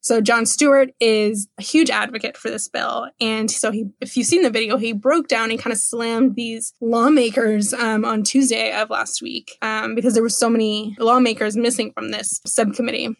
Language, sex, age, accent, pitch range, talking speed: English, female, 10-29, American, 225-265 Hz, 200 wpm